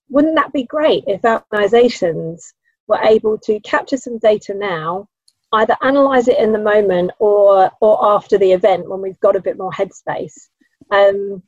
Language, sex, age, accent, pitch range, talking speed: English, female, 30-49, British, 195-245 Hz, 165 wpm